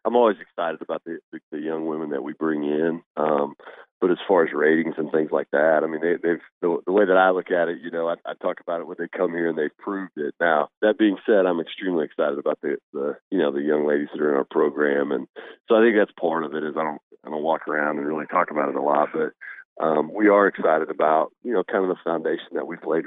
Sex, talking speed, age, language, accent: male, 280 wpm, 40-59, English, American